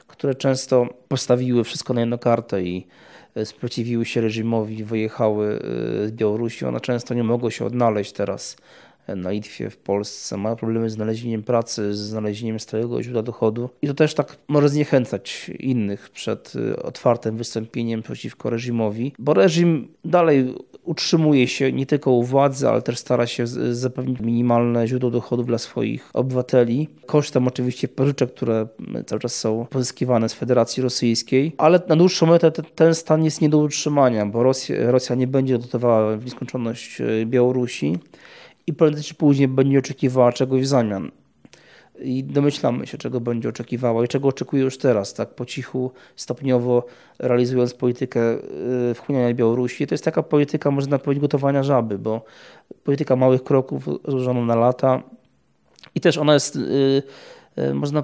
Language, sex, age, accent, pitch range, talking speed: Polish, male, 20-39, native, 115-140 Hz, 150 wpm